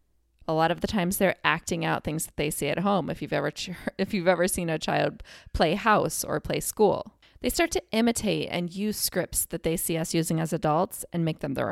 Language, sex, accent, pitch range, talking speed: English, female, American, 165-215 Hz, 235 wpm